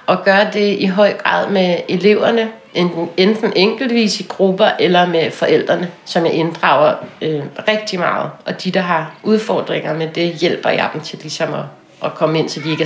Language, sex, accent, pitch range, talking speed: Danish, female, native, 175-210 Hz, 180 wpm